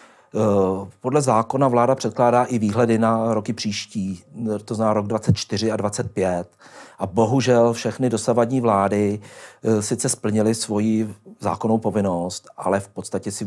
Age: 40-59